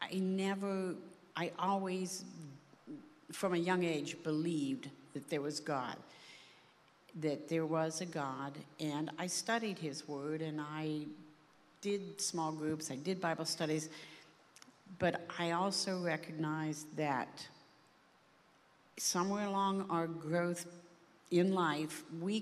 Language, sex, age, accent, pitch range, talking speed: English, female, 60-79, American, 150-180 Hz, 120 wpm